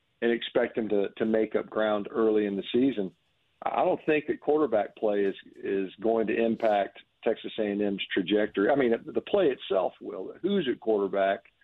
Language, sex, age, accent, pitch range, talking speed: English, male, 50-69, American, 100-115 Hz, 190 wpm